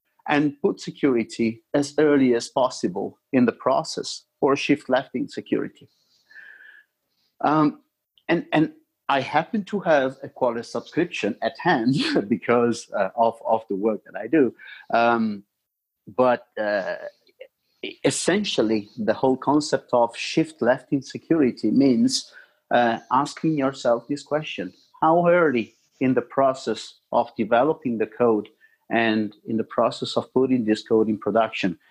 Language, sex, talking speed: English, male, 135 wpm